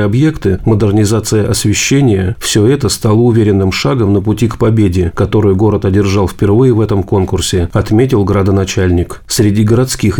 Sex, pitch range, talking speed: male, 100-120 Hz, 135 wpm